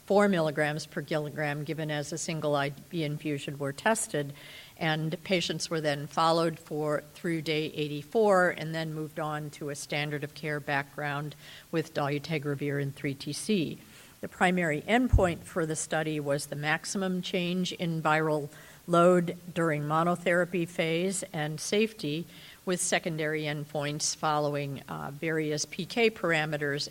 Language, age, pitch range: English, 50-69, 150-175 Hz